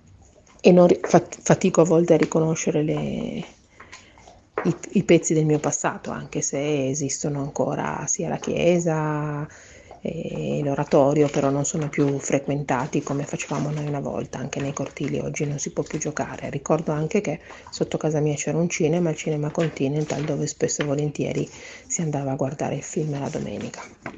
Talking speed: 160 wpm